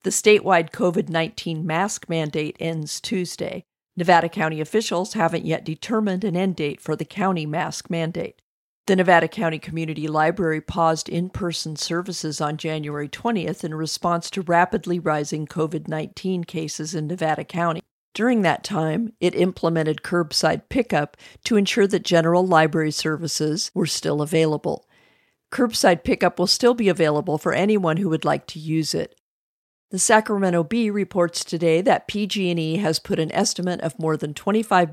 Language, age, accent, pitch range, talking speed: English, 50-69, American, 160-185 Hz, 150 wpm